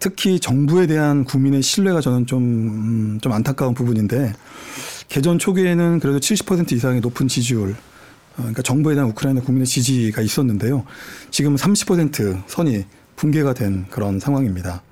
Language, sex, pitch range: Korean, male, 125-155 Hz